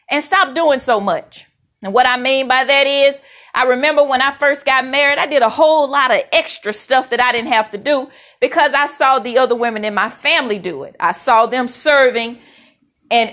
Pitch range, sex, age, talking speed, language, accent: 225-280 Hz, female, 40-59, 220 wpm, English, American